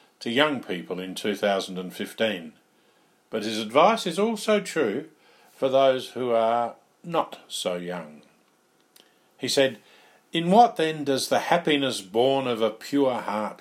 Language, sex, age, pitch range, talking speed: English, male, 50-69, 105-145 Hz, 135 wpm